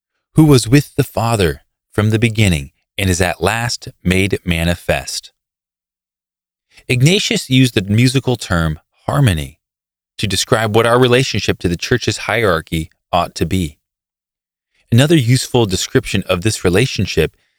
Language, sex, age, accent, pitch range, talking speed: English, male, 20-39, American, 85-125 Hz, 130 wpm